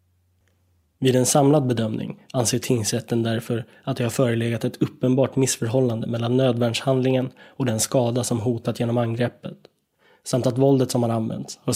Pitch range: 115-130 Hz